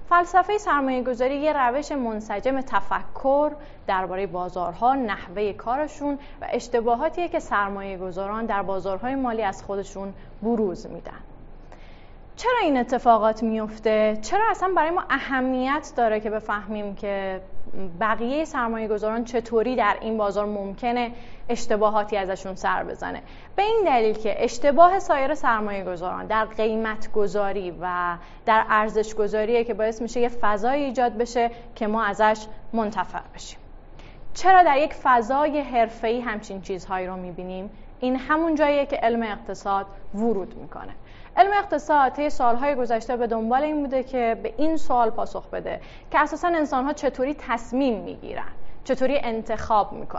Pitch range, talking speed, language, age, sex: 215-285 Hz, 130 wpm, Persian, 30-49, female